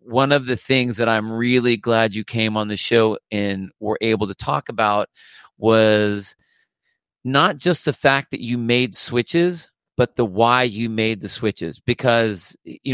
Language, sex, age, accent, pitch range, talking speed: English, male, 40-59, American, 110-130 Hz, 170 wpm